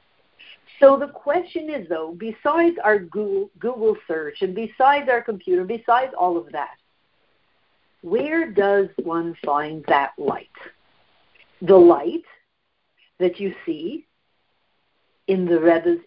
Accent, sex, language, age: American, female, English, 60-79